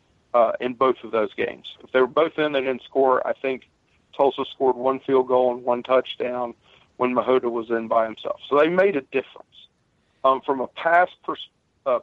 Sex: male